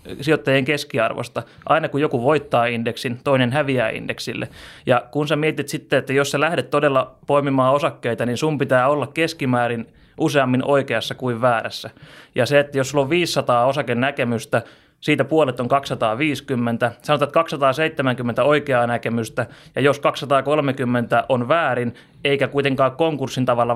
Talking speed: 145 wpm